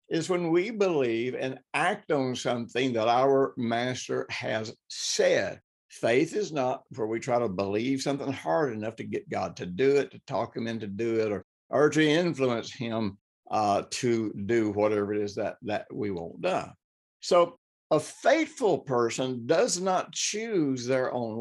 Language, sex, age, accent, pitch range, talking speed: English, male, 60-79, American, 110-145 Hz, 170 wpm